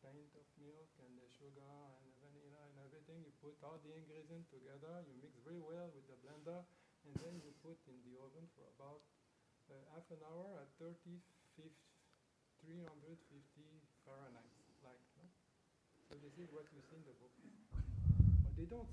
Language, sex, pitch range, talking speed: English, male, 140-170 Hz, 180 wpm